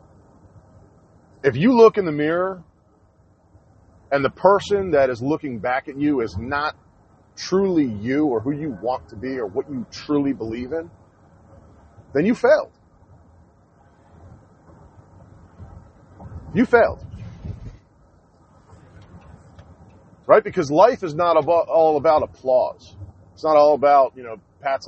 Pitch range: 90-145 Hz